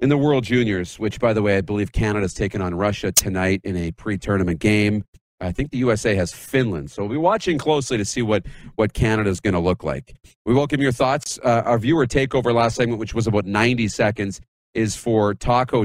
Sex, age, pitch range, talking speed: male, 40-59, 100-125 Hz, 215 wpm